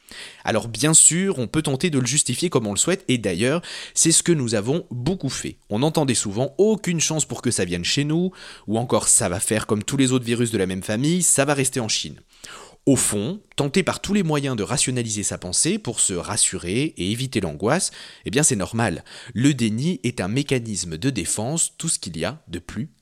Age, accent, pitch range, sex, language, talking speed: 30-49, French, 115-160 Hz, male, French, 225 wpm